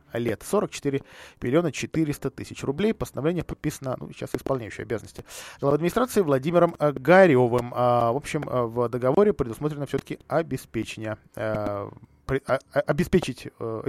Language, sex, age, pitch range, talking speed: Russian, male, 20-39, 120-160 Hz, 110 wpm